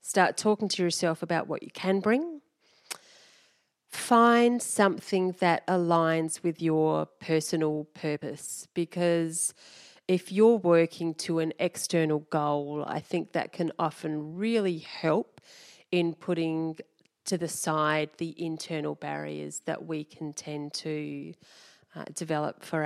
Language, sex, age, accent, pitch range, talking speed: English, female, 30-49, Australian, 155-195 Hz, 125 wpm